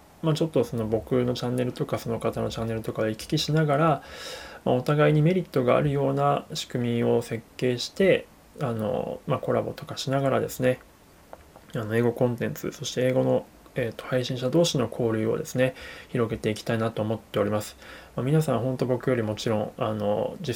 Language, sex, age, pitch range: Japanese, male, 20-39, 110-130 Hz